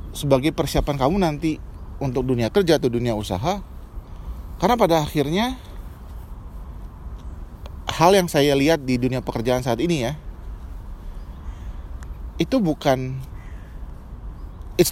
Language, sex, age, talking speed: Indonesian, male, 30-49, 105 wpm